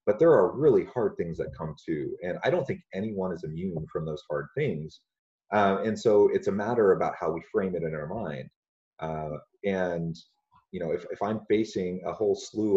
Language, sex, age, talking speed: English, male, 30-49, 210 wpm